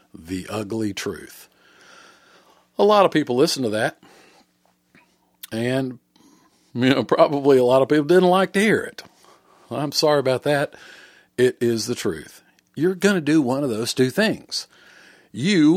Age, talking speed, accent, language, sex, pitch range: 50-69, 155 wpm, American, English, male, 90-125 Hz